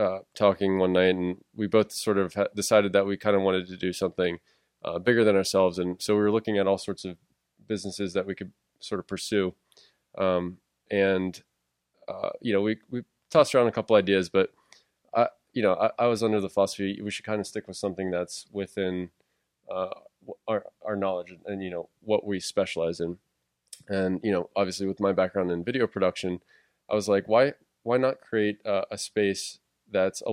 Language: English